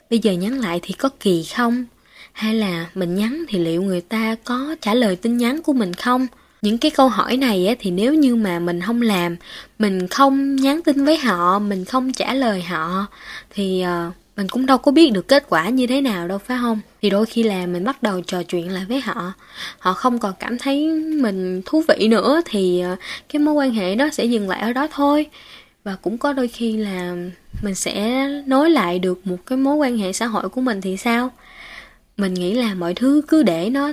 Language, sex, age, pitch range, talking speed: Vietnamese, female, 10-29, 185-260 Hz, 220 wpm